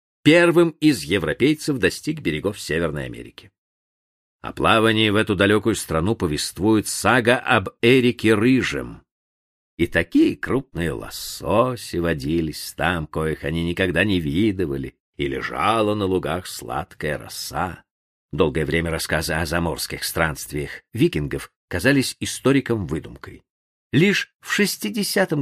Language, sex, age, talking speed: Russian, male, 50-69, 110 wpm